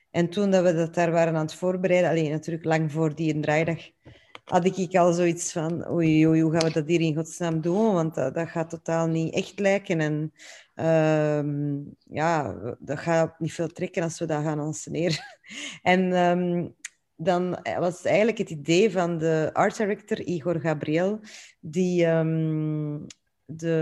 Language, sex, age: Dutch, female, 30-49